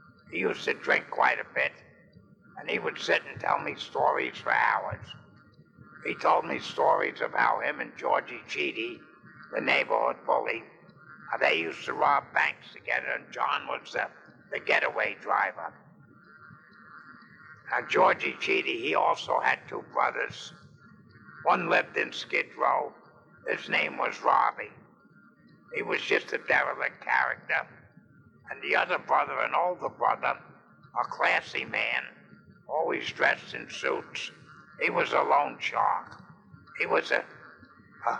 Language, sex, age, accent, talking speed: English, male, 60-79, American, 140 wpm